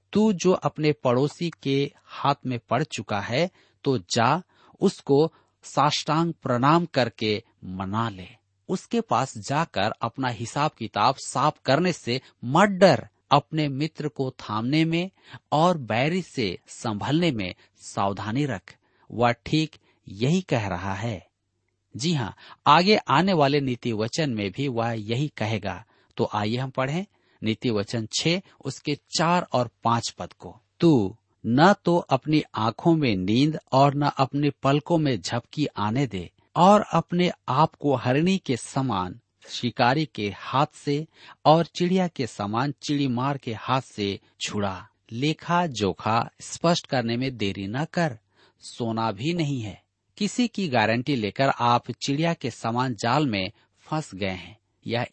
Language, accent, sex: Hindi, native, male